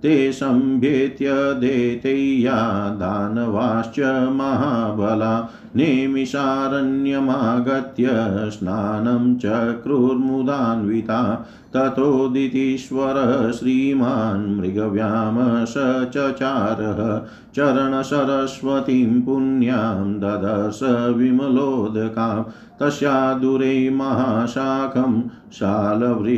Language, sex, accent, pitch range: Hindi, male, native, 110-135 Hz